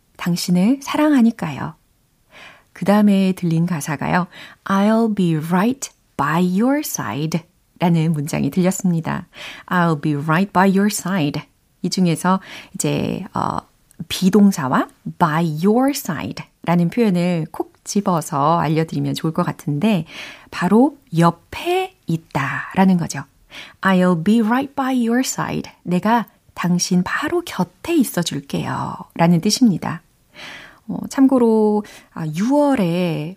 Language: Korean